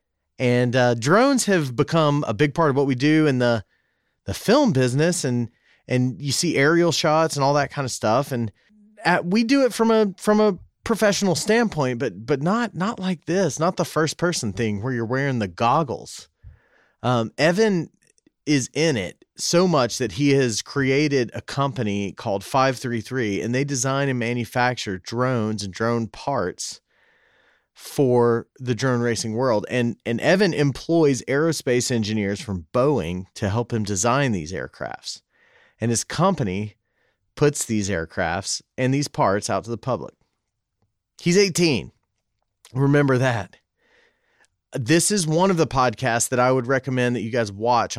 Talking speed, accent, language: 160 wpm, American, English